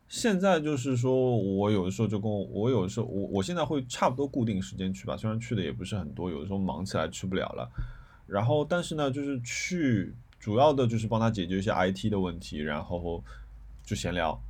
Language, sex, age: Chinese, male, 20-39